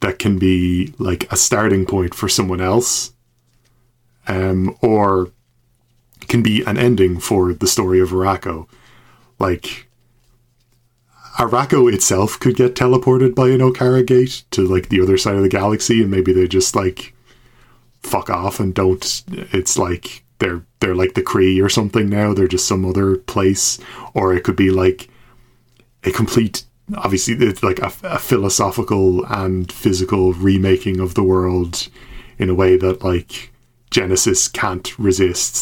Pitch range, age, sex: 95-120 Hz, 20-39, male